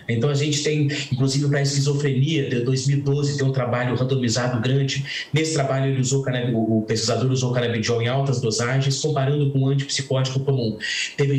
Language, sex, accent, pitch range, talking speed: Portuguese, male, Brazilian, 125-145 Hz, 180 wpm